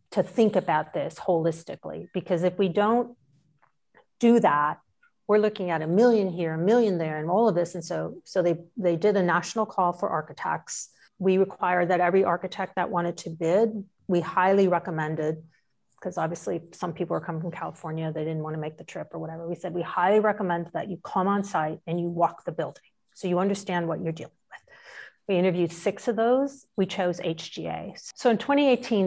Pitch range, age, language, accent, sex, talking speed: 170-205 Hz, 40-59, English, American, female, 200 wpm